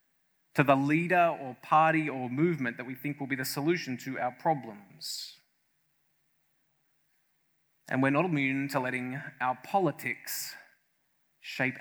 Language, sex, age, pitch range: English, male, 20-39, 130-165 Hz